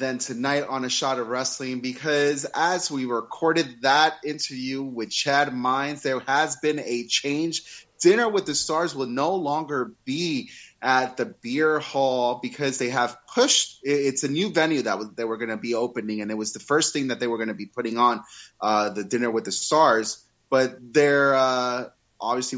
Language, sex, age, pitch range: English, male, 30-49, 120-150 Hz